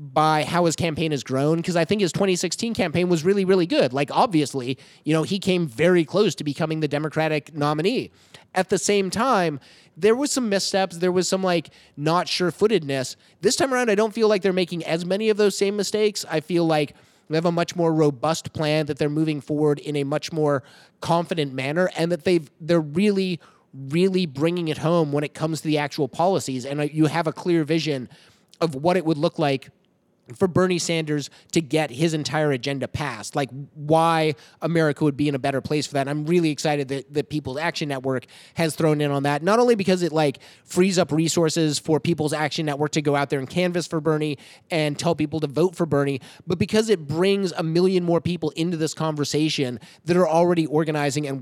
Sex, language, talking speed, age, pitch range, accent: male, English, 210 wpm, 30-49, 150-180 Hz, American